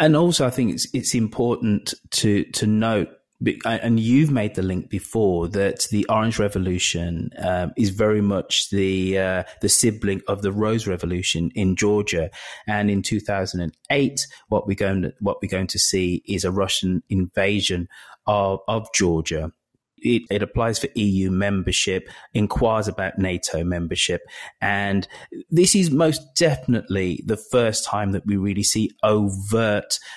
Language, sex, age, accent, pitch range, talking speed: English, male, 30-49, British, 95-110 Hz, 150 wpm